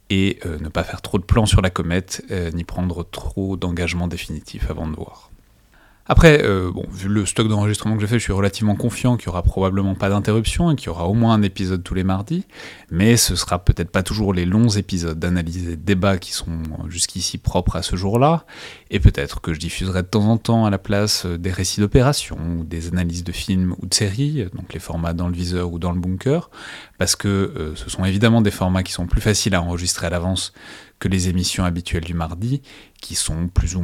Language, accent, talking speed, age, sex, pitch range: French, French, 230 wpm, 30-49, male, 85-105 Hz